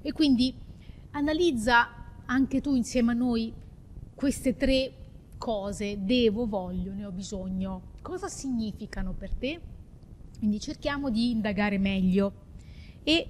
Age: 30-49